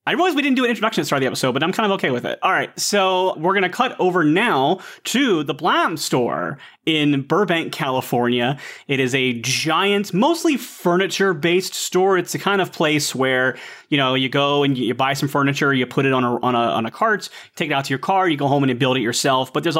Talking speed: 250 wpm